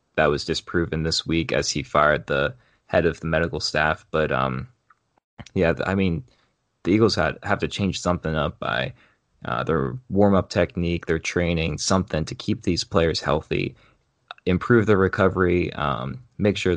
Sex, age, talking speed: male, 20-39, 170 wpm